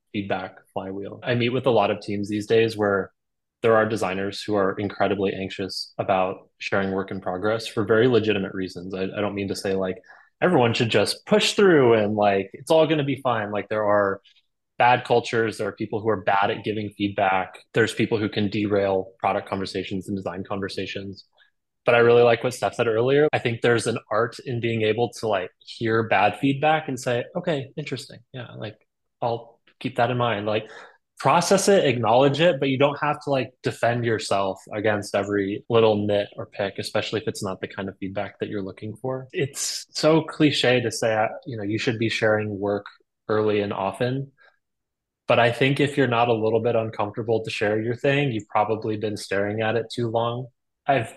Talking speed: 205 wpm